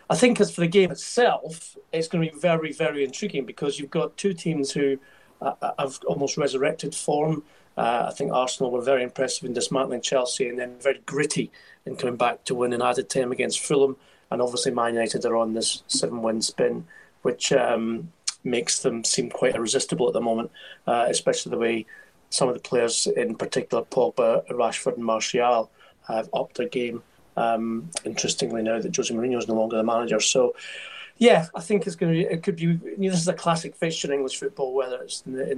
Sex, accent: male, British